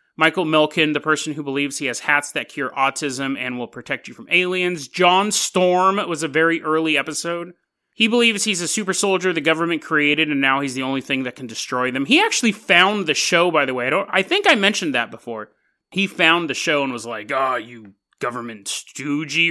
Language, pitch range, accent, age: English, 135-195 Hz, American, 30-49